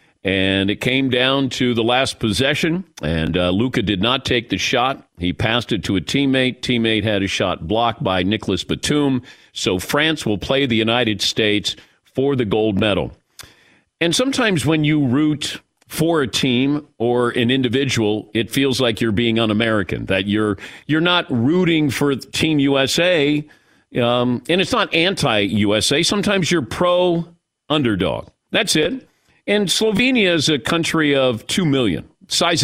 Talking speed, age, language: 155 wpm, 50-69, English